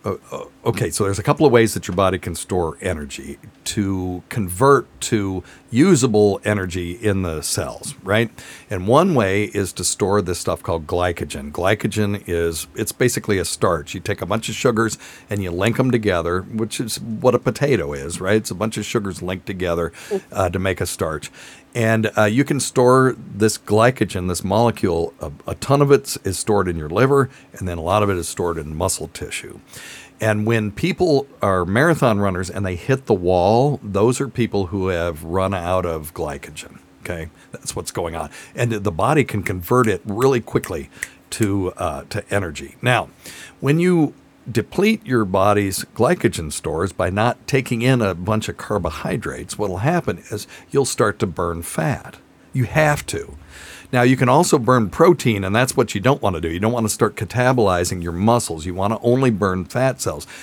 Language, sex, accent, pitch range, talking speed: English, male, American, 90-120 Hz, 190 wpm